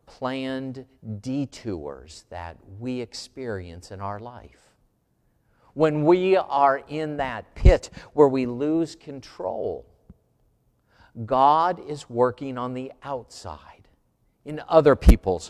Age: 50-69